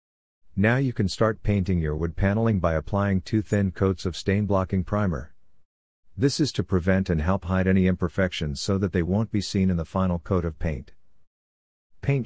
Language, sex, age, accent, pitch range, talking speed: English, male, 50-69, American, 85-105 Hz, 190 wpm